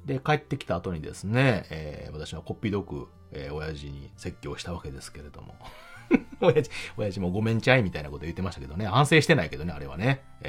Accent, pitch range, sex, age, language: native, 80-120 Hz, male, 40-59, Japanese